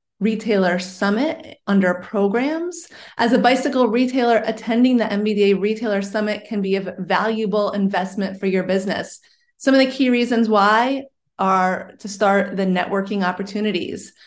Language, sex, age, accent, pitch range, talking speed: English, female, 30-49, American, 200-240 Hz, 140 wpm